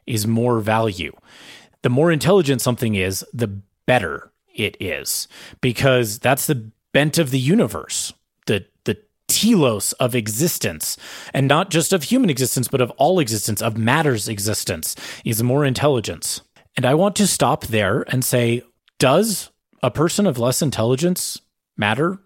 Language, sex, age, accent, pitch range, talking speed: English, male, 30-49, American, 115-150 Hz, 150 wpm